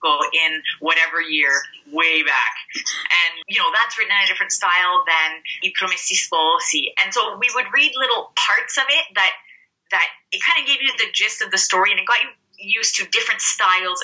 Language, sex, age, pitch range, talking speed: Italian, female, 20-39, 165-280 Hz, 205 wpm